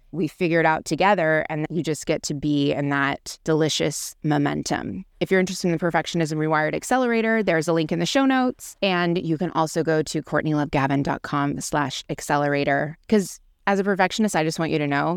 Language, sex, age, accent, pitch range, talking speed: English, female, 20-39, American, 155-195 Hz, 195 wpm